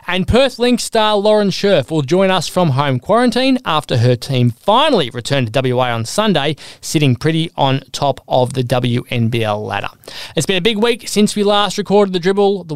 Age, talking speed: 20-39, 195 wpm